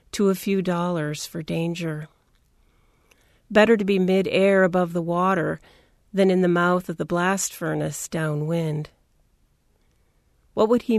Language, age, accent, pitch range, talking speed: English, 40-59, American, 165-195 Hz, 135 wpm